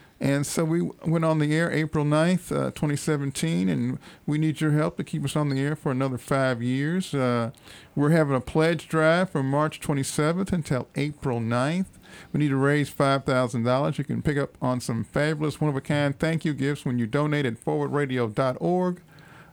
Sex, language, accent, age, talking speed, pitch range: male, English, American, 50-69, 180 wpm, 125-155 Hz